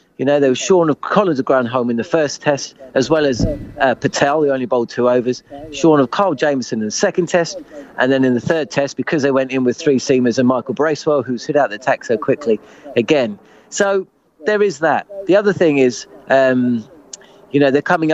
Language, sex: English, male